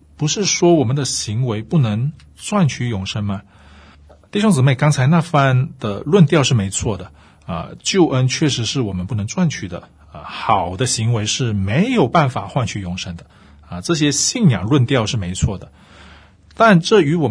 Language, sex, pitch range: Chinese, male, 100-150 Hz